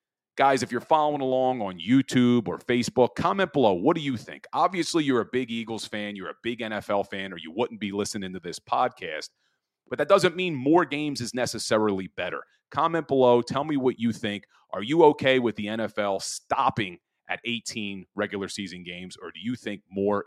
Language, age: English, 40-59